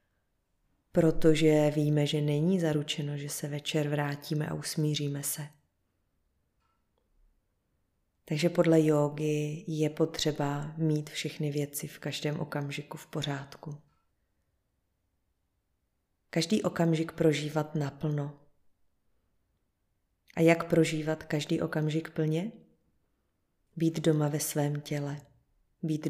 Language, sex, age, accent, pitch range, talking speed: Czech, female, 30-49, native, 105-160 Hz, 95 wpm